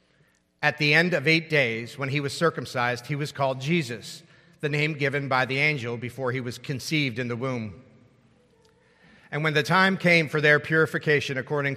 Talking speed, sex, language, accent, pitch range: 185 wpm, male, English, American, 125-155 Hz